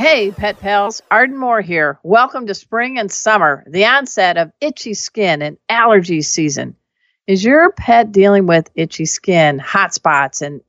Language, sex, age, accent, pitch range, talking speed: English, female, 50-69, American, 170-220 Hz, 165 wpm